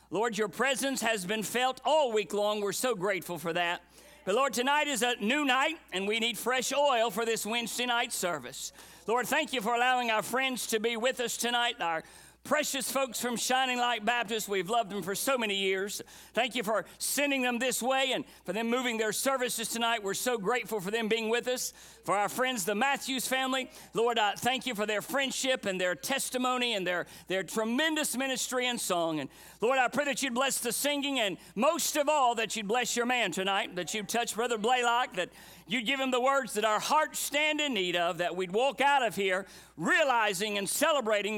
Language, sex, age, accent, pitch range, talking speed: English, male, 50-69, American, 210-265 Hz, 215 wpm